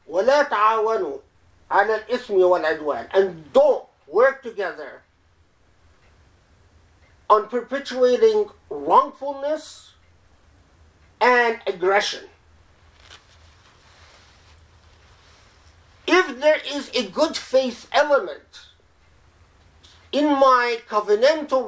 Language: English